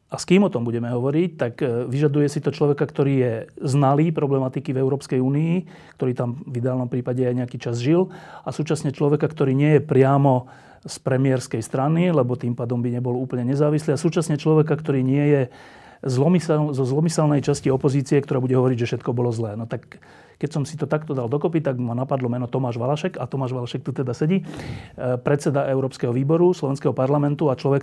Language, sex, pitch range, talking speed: Slovak, male, 125-150 Hz, 195 wpm